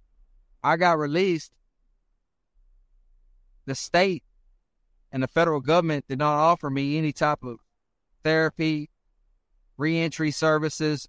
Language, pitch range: Greek, 125-170 Hz